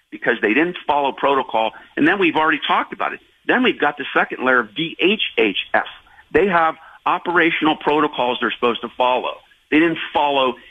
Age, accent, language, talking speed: 50-69, American, English, 175 wpm